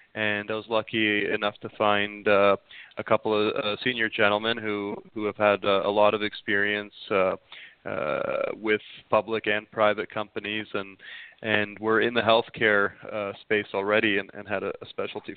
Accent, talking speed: American, 170 wpm